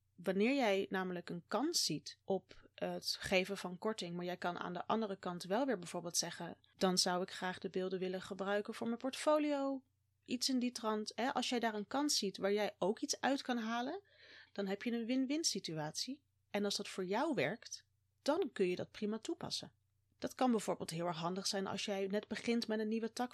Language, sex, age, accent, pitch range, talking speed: Dutch, female, 30-49, Dutch, 180-235 Hz, 215 wpm